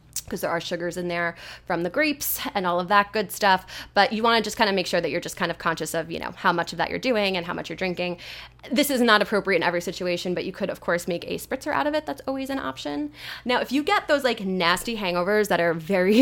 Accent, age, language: American, 20-39, English